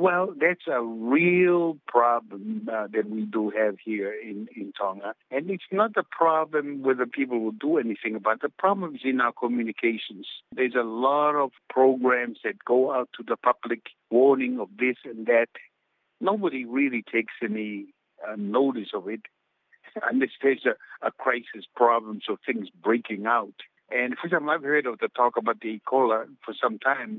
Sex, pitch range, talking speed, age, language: male, 115-135 Hz, 180 wpm, 60-79, English